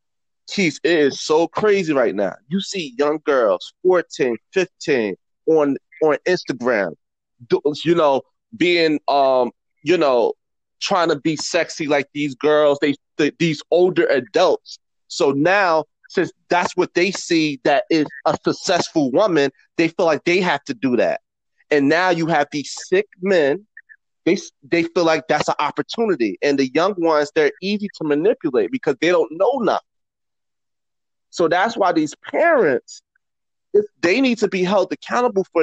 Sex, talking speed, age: male, 155 wpm, 30-49